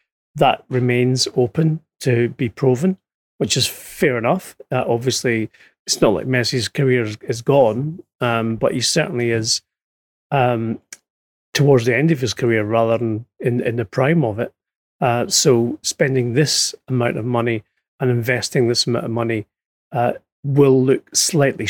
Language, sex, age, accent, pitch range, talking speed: English, male, 30-49, British, 115-135 Hz, 160 wpm